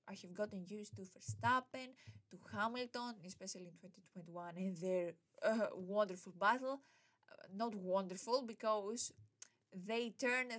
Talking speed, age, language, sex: 125 wpm, 20-39, English, female